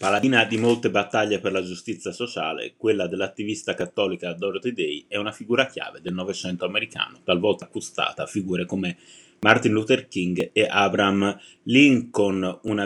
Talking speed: 150 wpm